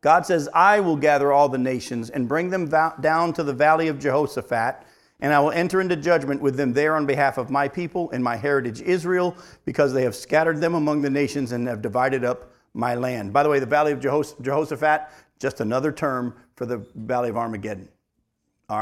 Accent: American